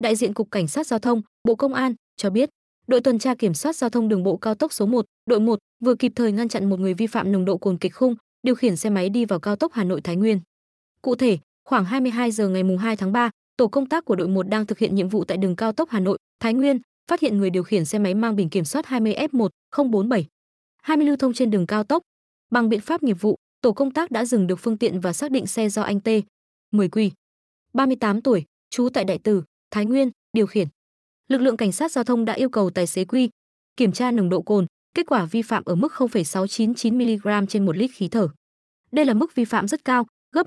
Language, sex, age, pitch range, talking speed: Vietnamese, female, 20-39, 195-250 Hz, 255 wpm